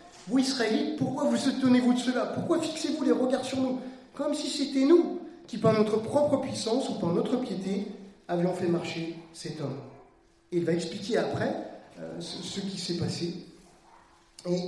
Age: 30-49